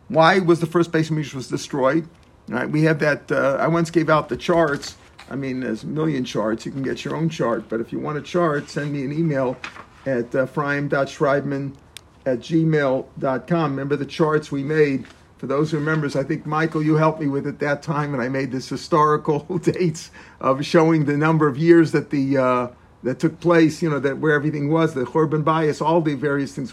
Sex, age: male, 50-69